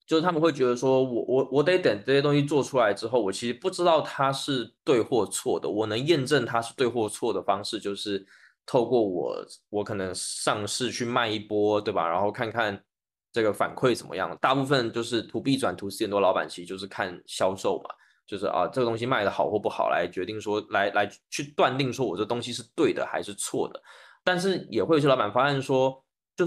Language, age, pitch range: Chinese, 20-39, 105-135 Hz